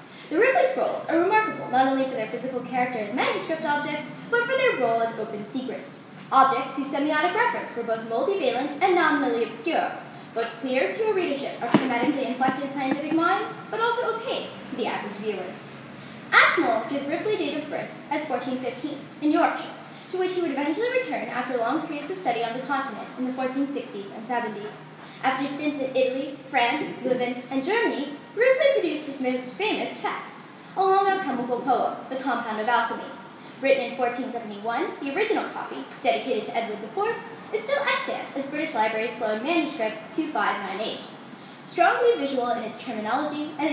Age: 10-29